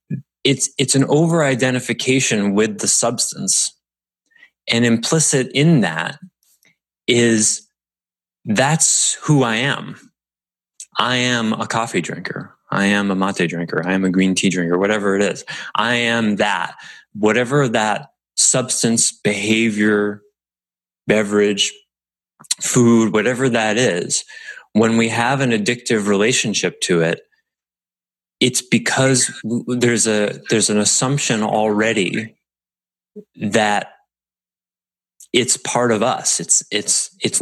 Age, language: 30-49, English